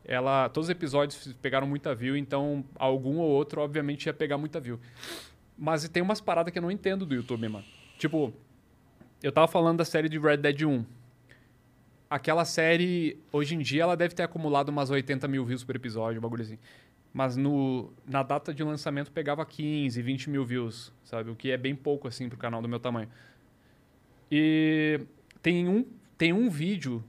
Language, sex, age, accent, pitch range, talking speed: Portuguese, male, 20-39, Brazilian, 130-170 Hz, 180 wpm